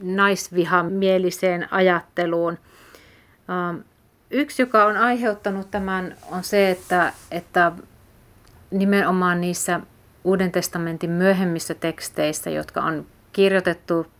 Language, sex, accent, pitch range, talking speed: Finnish, female, native, 165-195 Hz, 85 wpm